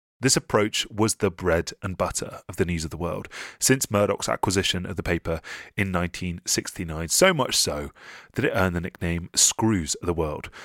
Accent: British